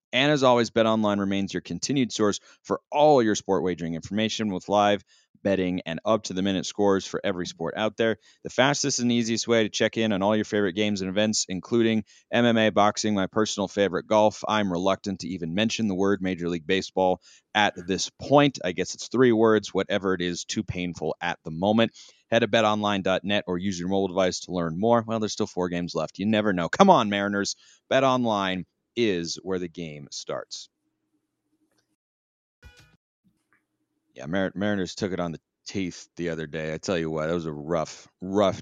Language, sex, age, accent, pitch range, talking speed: English, male, 30-49, American, 90-110 Hz, 190 wpm